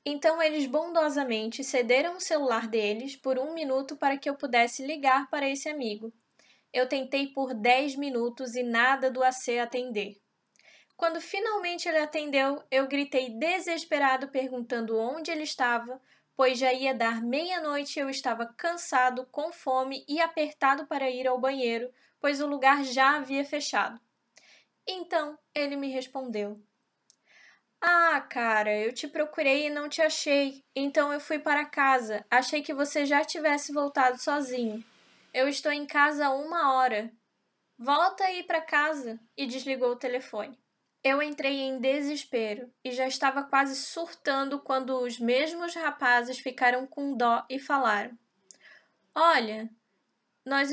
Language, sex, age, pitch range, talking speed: Portuguese, female, 10-29, 250-295 Hz, 145 wpm